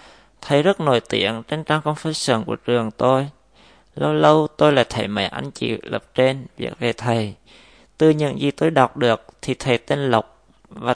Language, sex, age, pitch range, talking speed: Vietnamese, male, 20-39, 115-135 Hz, 185 wpm